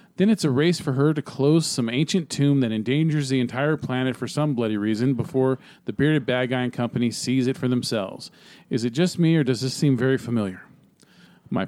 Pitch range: 130-175 Hz